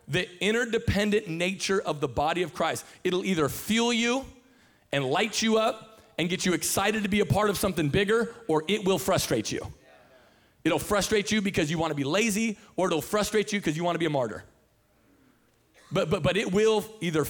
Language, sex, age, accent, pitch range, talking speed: English, male, 30-49, American, 165-210 Hz, 200 wpm